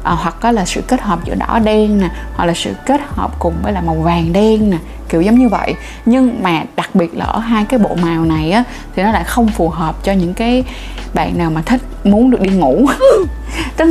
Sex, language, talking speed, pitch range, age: female, Vietnamese, 240 wpm, 175-240 Hz, 20-39